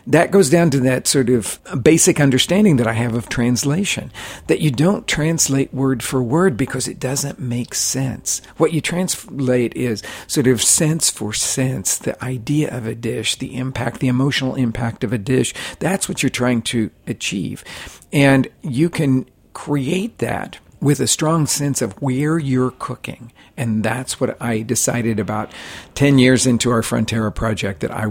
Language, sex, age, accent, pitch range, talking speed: English, male, 50-69, American, 115-145 Hz, 175 wpm